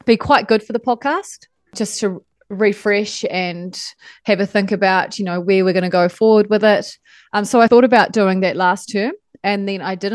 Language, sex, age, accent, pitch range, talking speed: English, female, 30-49, Australian, 180-220 Hz, 220 wpm